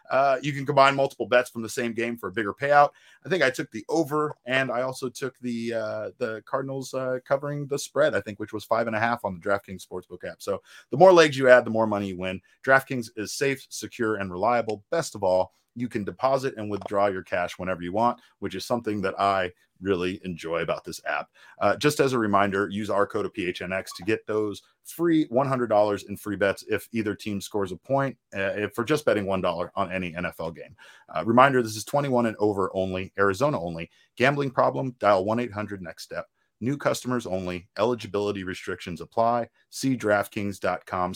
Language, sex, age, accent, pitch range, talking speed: English, male, 30-49, American, 105-130 Hz, 205 wpm